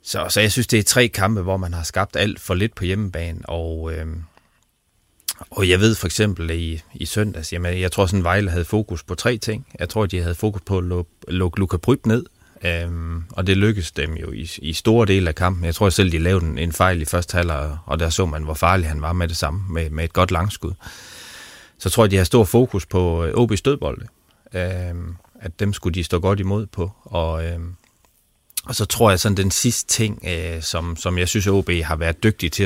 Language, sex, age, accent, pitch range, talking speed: Danish, male, 30-49, native, 85-100 Hz, 245 wpm